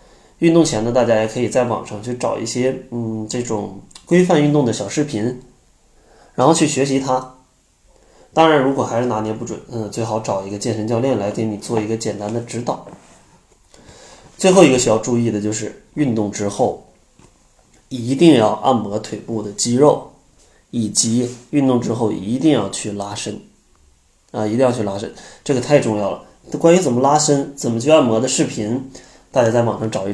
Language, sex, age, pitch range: Chinese, male, 20-39, 110-130 Hz